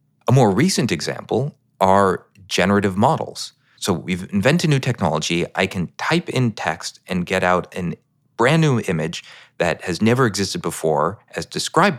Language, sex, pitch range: English, male, 90-125 Hz